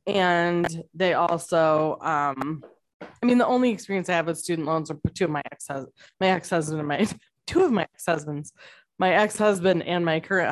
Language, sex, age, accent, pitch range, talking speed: English, female, 20-39, American, 160-195 Hz, 185 wpm